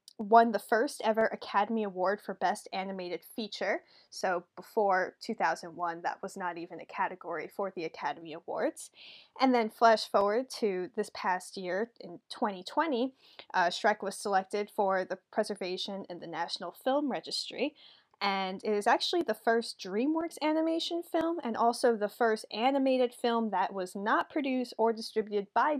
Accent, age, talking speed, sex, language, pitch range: American, 10-29, 155 wpm, female, English, 190-235 Hz